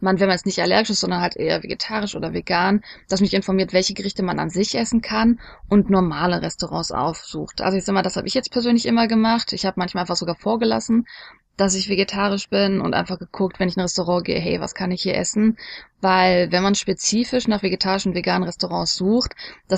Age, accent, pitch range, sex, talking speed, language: 20-39, German, 180-220 Hz, female, 220 wpm, German